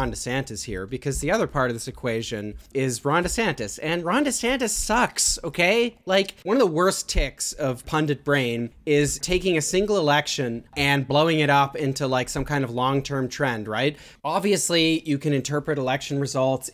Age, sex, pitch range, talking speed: 30-49, male, 130-160 Hz, 175 wpm